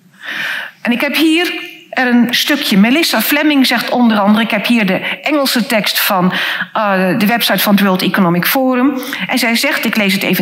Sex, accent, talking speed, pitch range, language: female, Dutch, 195 wpm, 205-275 Hz, Dutch